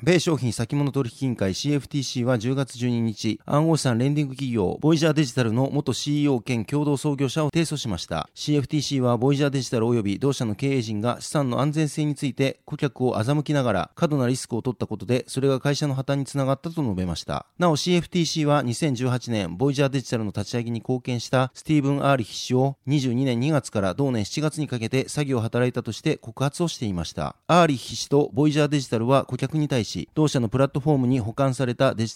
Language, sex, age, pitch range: Japanese, male, 30-49, 120-145 Hz